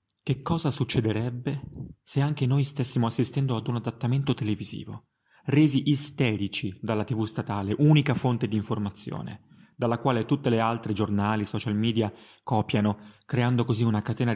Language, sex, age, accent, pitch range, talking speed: Italian, male, 30-49, native, 105-125 Hz, 140 wpm